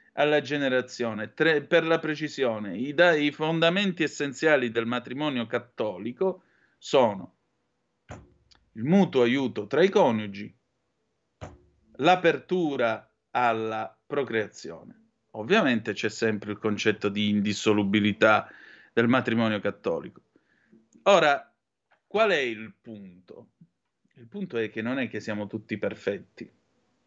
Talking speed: 105 wpm